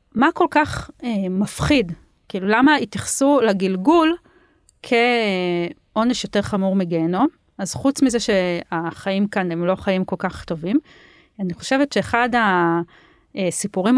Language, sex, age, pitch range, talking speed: Hebrew, female, 30-49, 180-255 Hz, 120 wpm